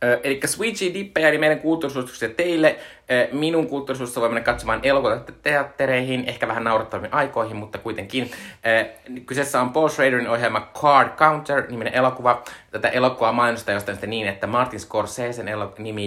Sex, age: male, 20-39